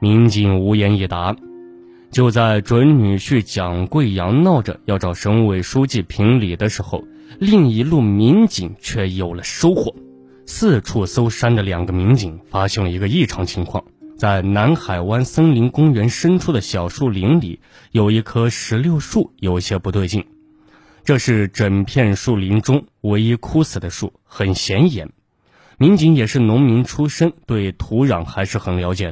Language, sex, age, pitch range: Chinese, male, 20-39, 95-135 Hz